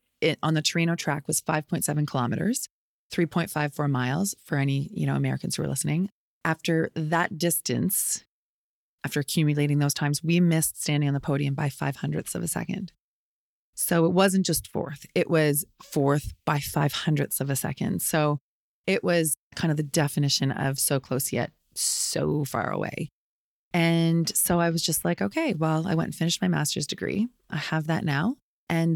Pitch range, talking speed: 145-170 Hz, 175 wpm